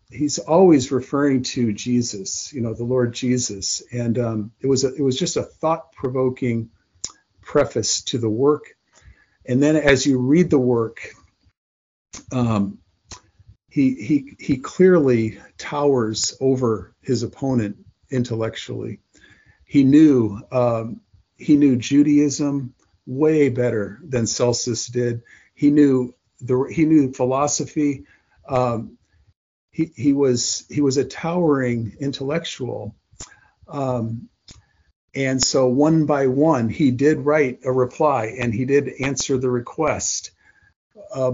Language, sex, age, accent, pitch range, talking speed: English, male, 50-69, American, 115-140 Hz, 125 wpm